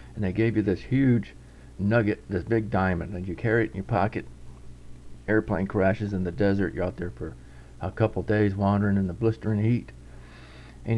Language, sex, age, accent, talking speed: English, male, 50-69, American, 190 wpm